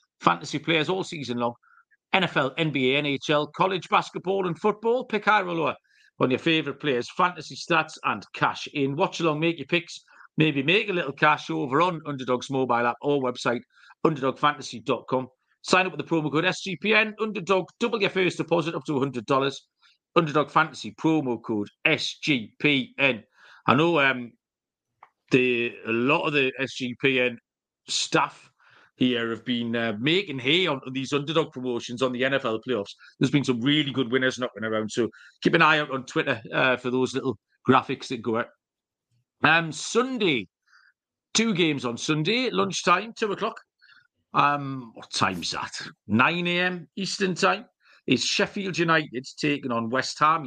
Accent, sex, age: British, male, 40-59